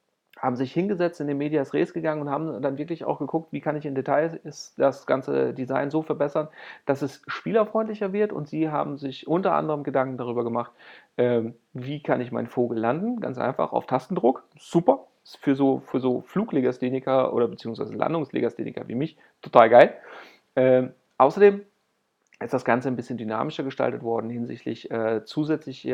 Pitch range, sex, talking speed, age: 125-155 Hz, male, 170 wpm, 40-59